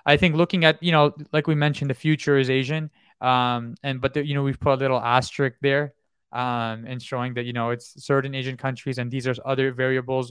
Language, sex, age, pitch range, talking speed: English, male, 20-39, 125-140 Hz, 225 wpm